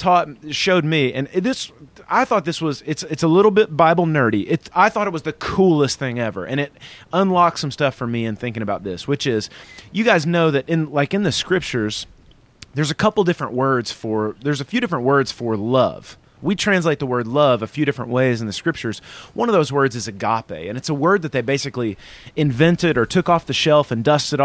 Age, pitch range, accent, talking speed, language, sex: 30-49, 115-160 Hz, American, 230 wpm, English, male